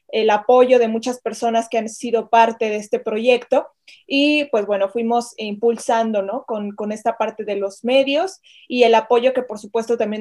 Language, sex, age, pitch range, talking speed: Spanish, female, 20-39, 220-255 Hz, 190 wpm